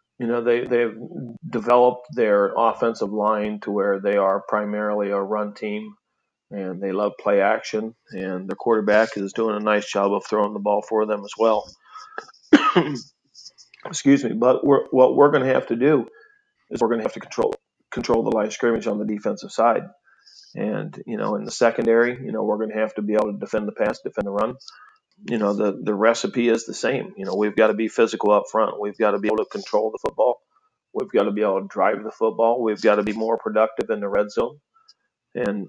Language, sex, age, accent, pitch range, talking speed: English, male, 40-59, American, 105-120 Hz, 220 wpm